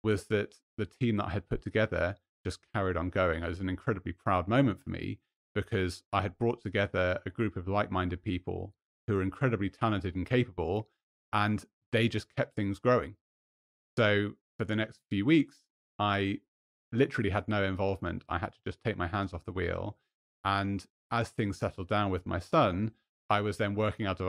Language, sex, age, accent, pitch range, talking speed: English, male, 30-49, British, 90-110 Hz, 195 wpm